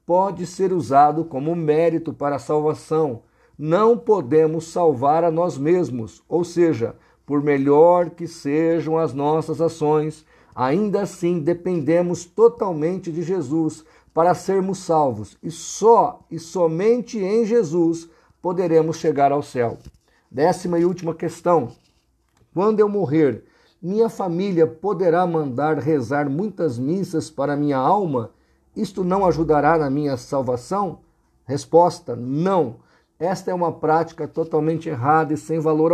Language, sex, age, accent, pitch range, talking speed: Portuguese, male, 50-69, Brazilian, 150-175 Hz, 125 wpm